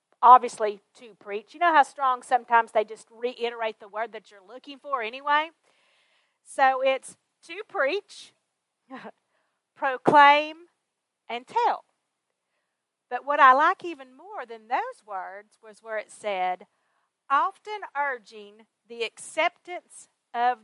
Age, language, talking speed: 40-59, English, 125 wpm